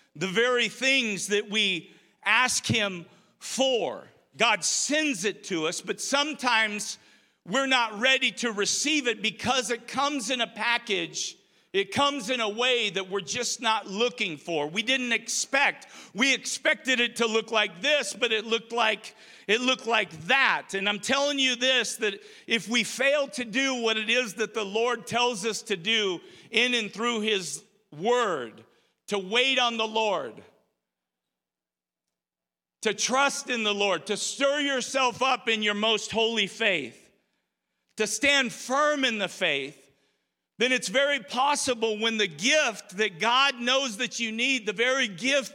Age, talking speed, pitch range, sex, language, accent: 50-69, 160 wpm, 195-250 Hz, male, English, American